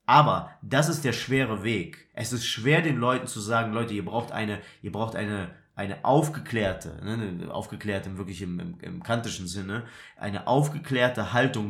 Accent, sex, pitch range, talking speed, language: German, male, 115-145 Hz, 170 wpm, German